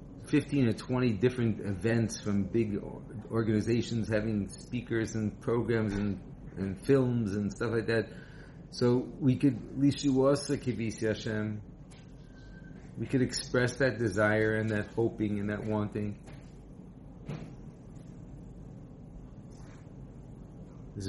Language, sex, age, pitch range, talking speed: English, male, 40-59, 100-130 Hz, 95 wpm